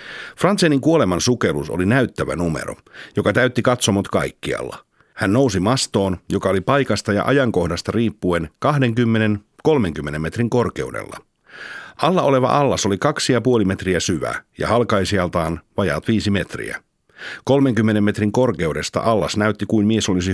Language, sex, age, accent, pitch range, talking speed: Finnish, male, 60-79, native, 90-120 Hz, 125 wpm